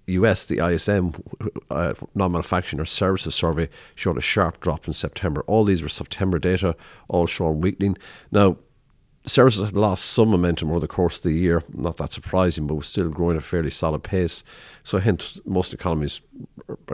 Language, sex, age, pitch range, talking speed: English, male, 50-69, 80-95 Hz, 180 wpm